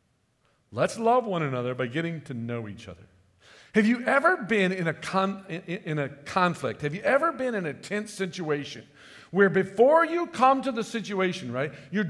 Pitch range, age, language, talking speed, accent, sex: 155-235 Hz, 50-69, English, 185 wpm, American, male